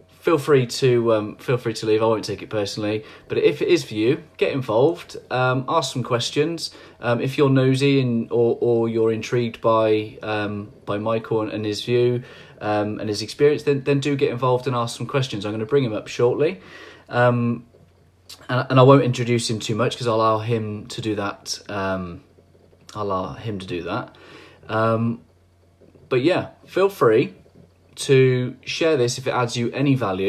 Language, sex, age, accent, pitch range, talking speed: English, male, 20-39, British, 105-140 Hz, 195 wpm